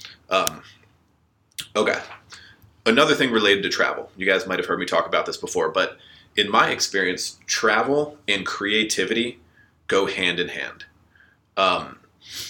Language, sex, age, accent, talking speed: English, male, 30-49, American, 140 wpm